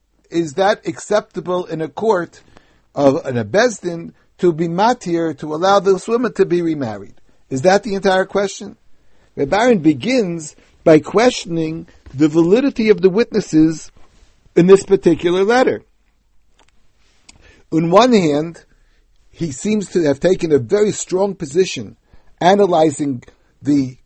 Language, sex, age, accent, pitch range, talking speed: English, male, 60-79, American, 155-205 Hz, 130 wpm